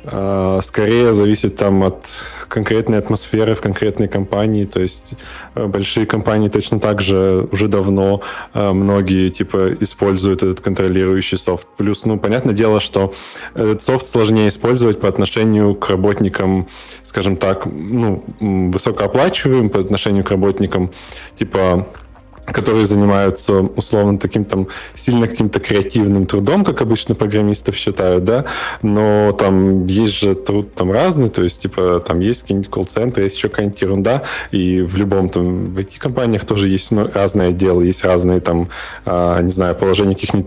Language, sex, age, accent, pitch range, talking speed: Russian, male, 20-39, native, 95-105 Hz, 145 wpm